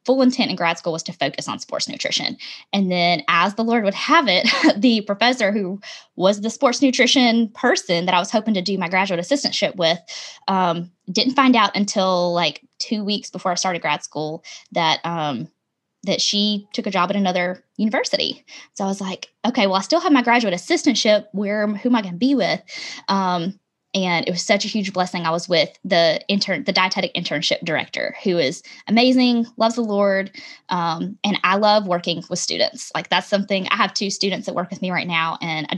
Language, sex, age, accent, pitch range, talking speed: English, female, 10-29, American, 180-225 Hz, 210 wpm